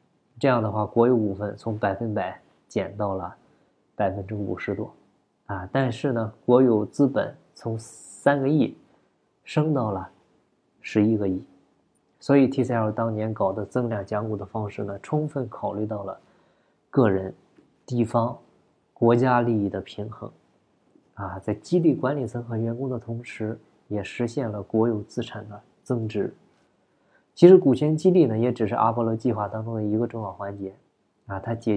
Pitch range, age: 105-135 Hz, 20-39